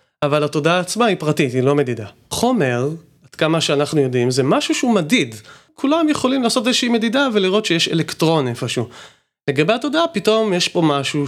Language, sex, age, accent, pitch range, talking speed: Hebrew, male, 30-49, native, 140-185 Hz, 170 wpm